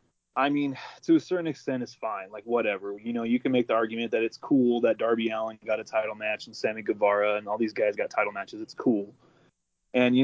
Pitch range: 110-140 Hz